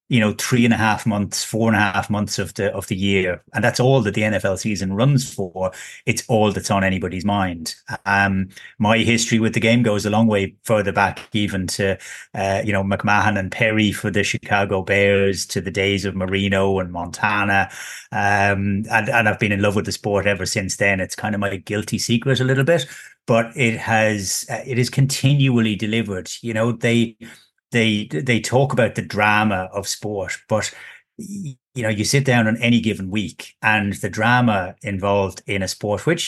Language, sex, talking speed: English, male, 200 wpm